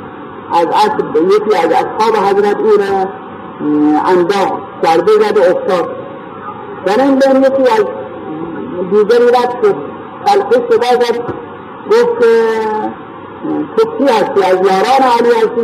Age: 50-69